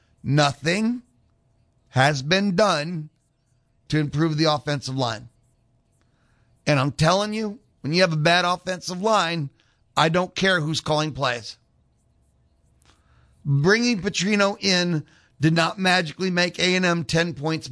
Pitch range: 120-185 Hz